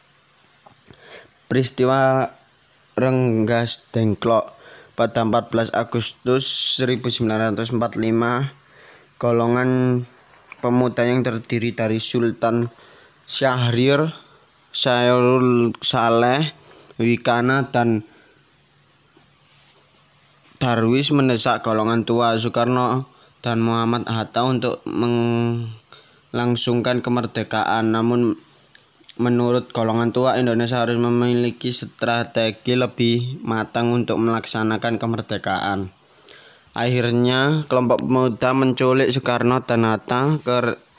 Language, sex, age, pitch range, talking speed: Indonesian, male, 20-39, 115-125 Hz, 75 wpm